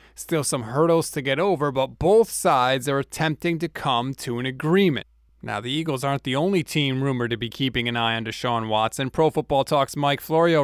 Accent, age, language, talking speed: American, 30-49, English, 210 wpm